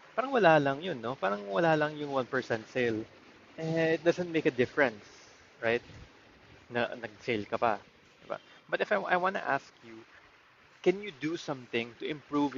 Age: 20-39